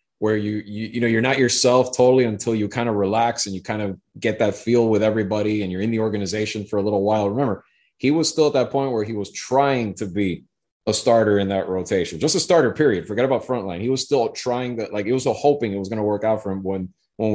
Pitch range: 100-120 Hz